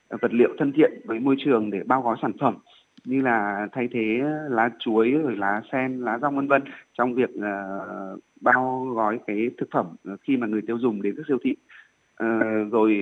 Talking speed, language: 205 wpm, Vietnamese